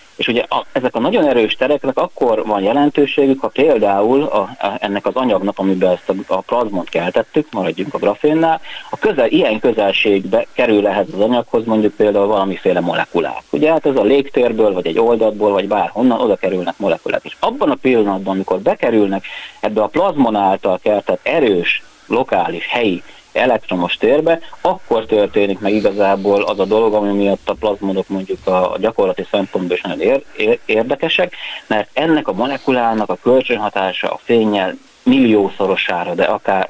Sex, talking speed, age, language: male, 160 wpm, 30-49, Hungarian